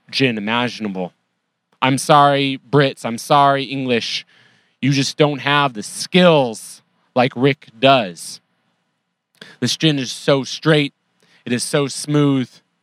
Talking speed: 120 wpm